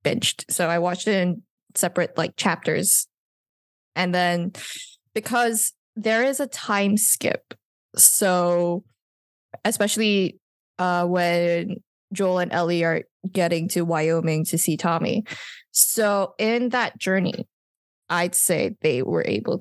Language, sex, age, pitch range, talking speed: English, female, 10-29, 170-195 Hz, 120 wpm